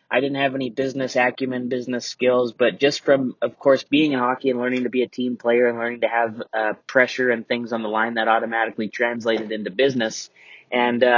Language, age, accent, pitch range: English, 20-39, American, 125-145 Hz